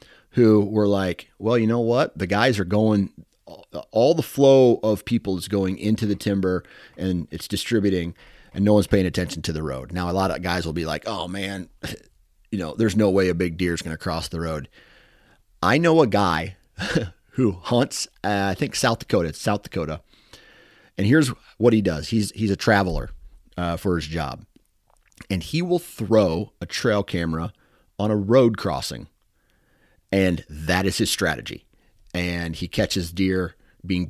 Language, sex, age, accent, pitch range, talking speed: English, male, 30-49, American, 85-105 Hz, 185 wpm